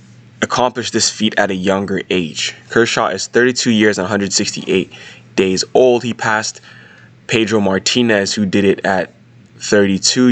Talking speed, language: 140 wpm, English